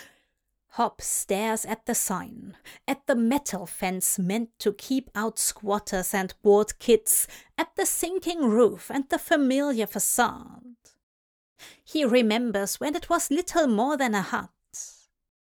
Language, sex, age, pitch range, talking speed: English, female, 30-49, 215-315 Hz, 135 wpm